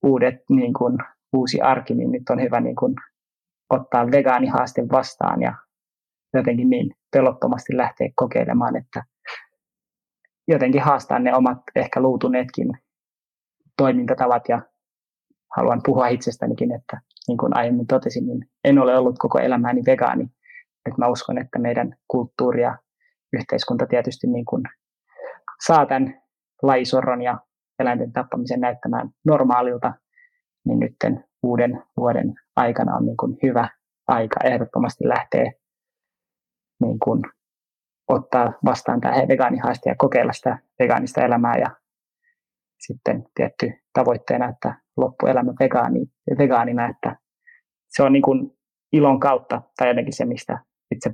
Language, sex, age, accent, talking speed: Finnish, male, 20-39, native, 120 wpm